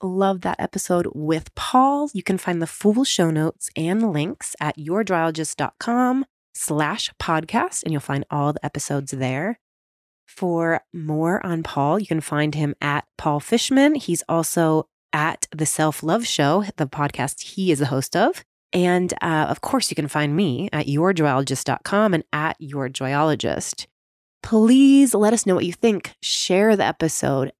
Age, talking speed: 20-39, 160 wpm